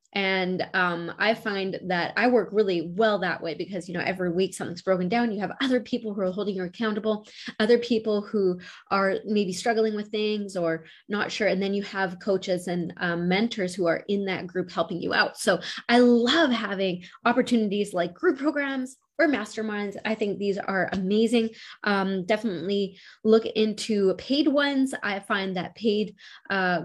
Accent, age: American, 20-39